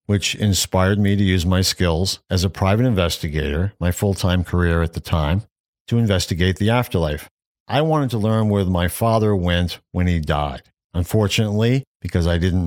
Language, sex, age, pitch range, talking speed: English, male, 50-69, 90-110 Hz, 170 wpm